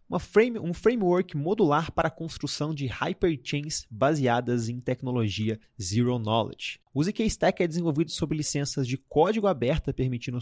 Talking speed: 150 wpm